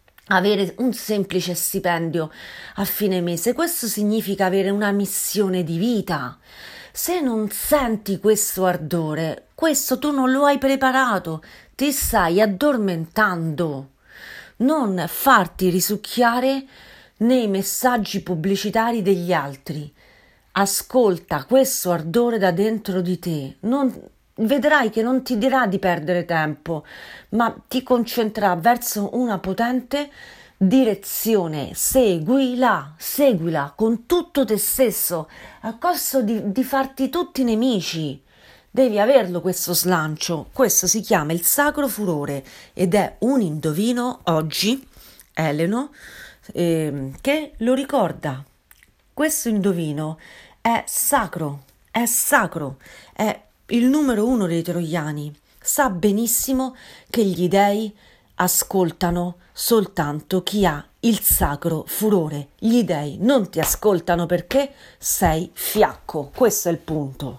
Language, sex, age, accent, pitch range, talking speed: Italian, female, 40-59, native, 175-245 Hz, 115 wpm